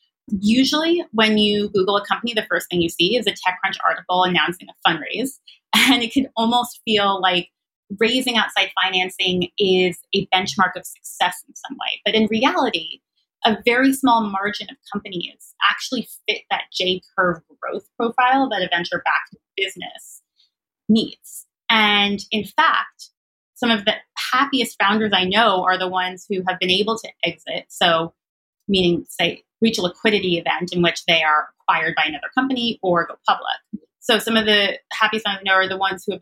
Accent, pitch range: American, 180-225 Hz